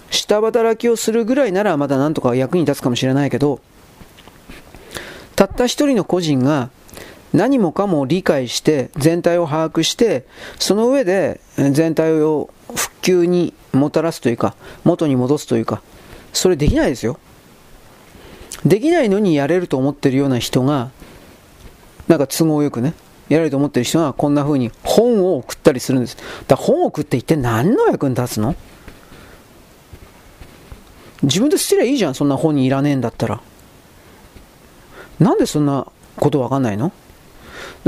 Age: 40-59